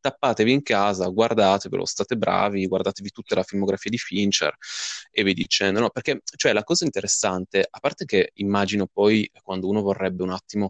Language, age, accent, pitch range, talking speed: Italian, 20-39, native, 95-110 Hz, 175 wpm